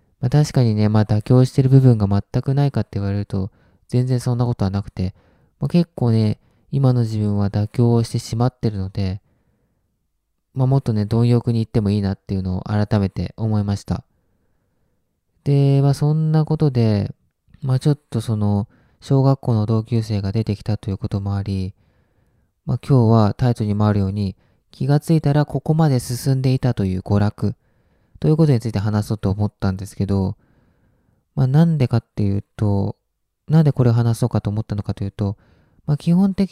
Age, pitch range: 20-39, 100-135 Hz